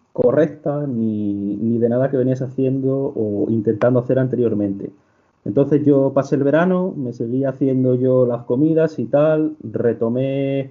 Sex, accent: male, Spanish